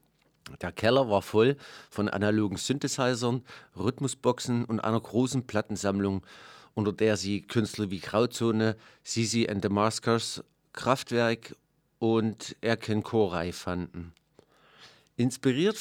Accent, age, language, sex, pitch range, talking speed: German, 50-69, German, male, 100-120 Hz, 105 wpm